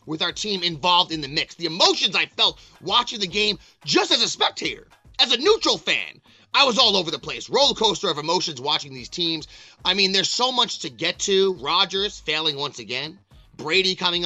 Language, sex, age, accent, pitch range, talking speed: English, male, 30-49, American, 140-180 Hz, 200 wpm